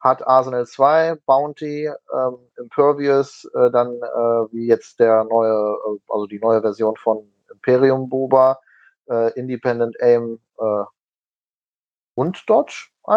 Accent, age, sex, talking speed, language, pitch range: German, 30-49, male, 125 wpm, German, 115-140 Hz